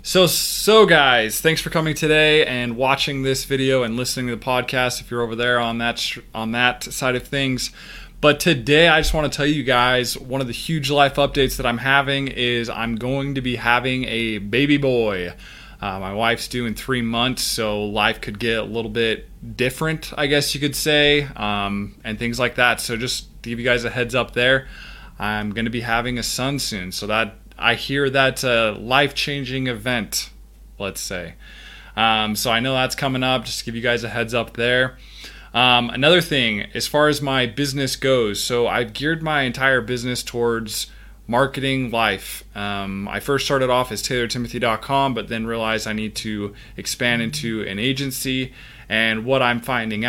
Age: 20-39